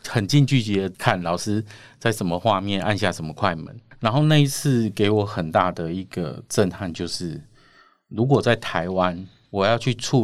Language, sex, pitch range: Chinese, male, 95-120 Hz